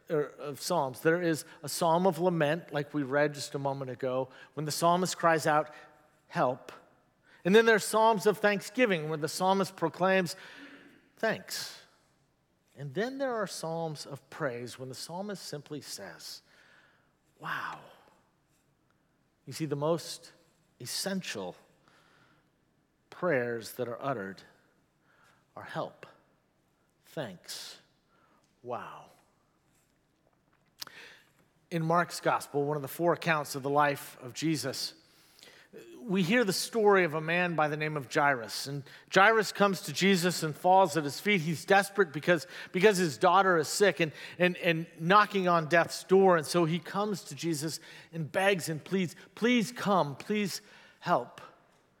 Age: 50-69